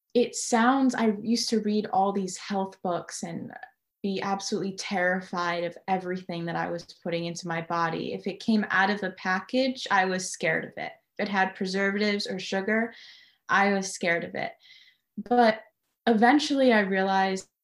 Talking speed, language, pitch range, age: 170 wpm, English, 180-225 Hz, 20-39